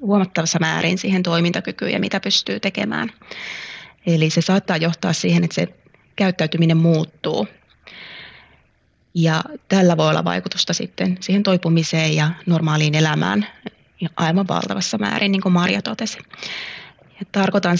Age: 20-39